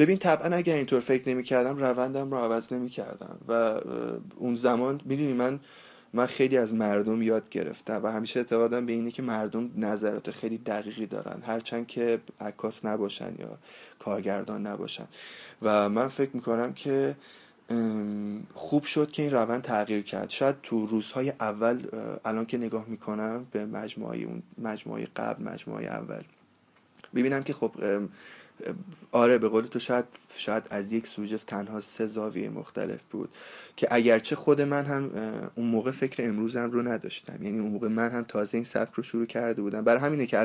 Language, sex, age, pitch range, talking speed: Persian, male, 20-39, 110-130 Hz, 160 wpm